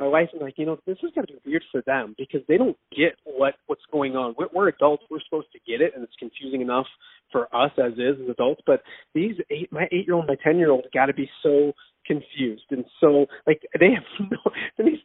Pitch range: 140-210 Hz